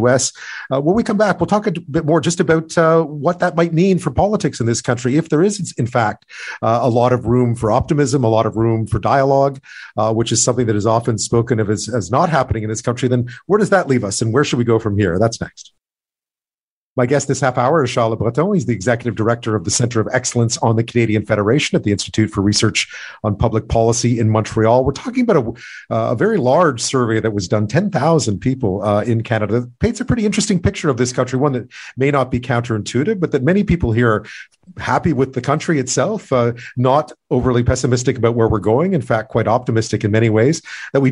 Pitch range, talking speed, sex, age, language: 115-150 Hz, 235 wpm, male, 40-59, English